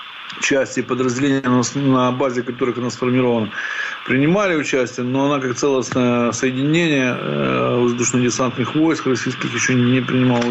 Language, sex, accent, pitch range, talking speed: Ukrainian, male, native, 125-145 Hz, 115 wpm